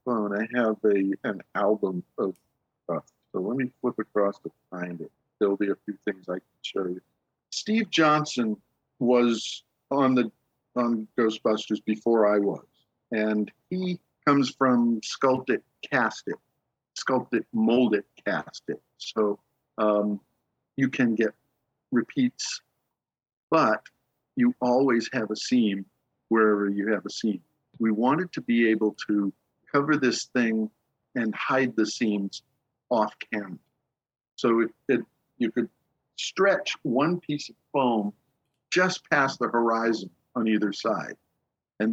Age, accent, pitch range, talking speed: 50-69, American, 105-130 Hz, 145 wpm